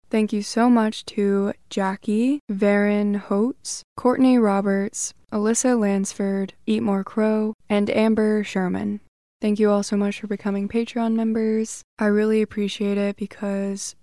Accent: American